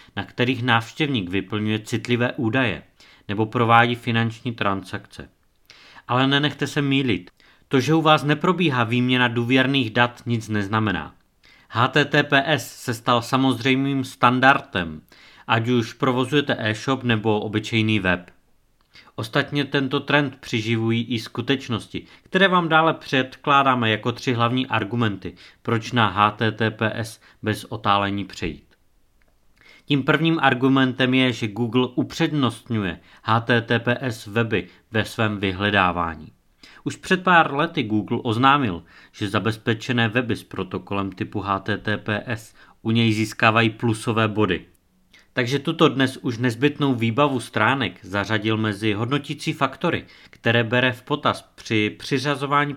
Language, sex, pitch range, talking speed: Czech, male, 105-135 Hz, 115 wpm